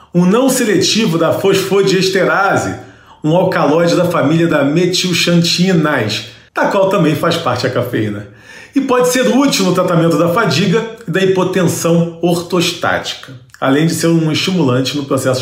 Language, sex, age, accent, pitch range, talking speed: Portuguese, male, 40-59, Brazilian, 130-190 Hz, 145 wpm